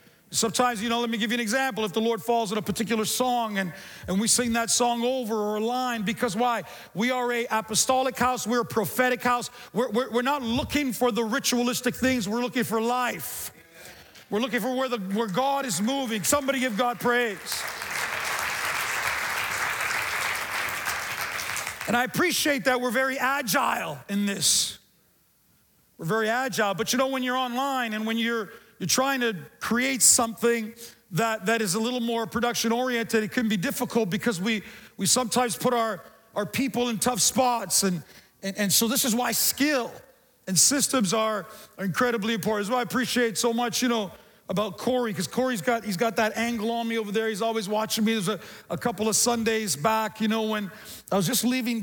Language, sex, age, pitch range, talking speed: English, male, 40-59, 220-250 Hz, 190 wpm